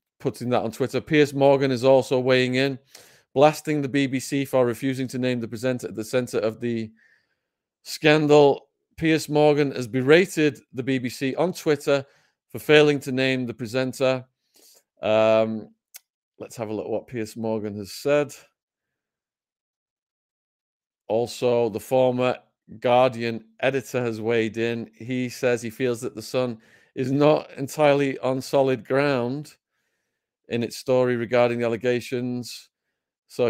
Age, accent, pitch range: 40-59, British, 115-140 Hz